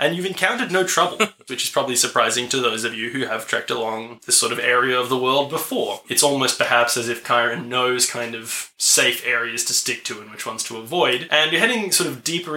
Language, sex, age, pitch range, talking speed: English, male, 20-39, 120-150 Hz, 240 wpm